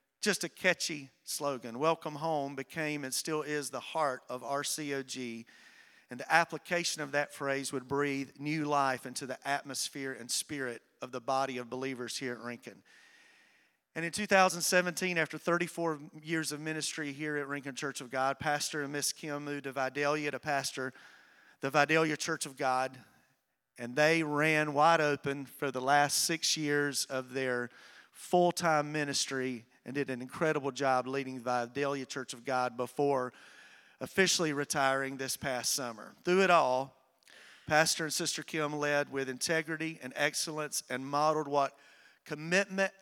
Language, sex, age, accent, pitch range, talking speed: English, male, 40-59, American, 130-155 Hz, 155 wpm